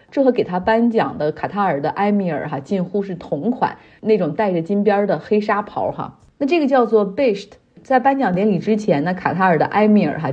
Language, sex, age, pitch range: Chinese, female, 30-49, 160-210 Hz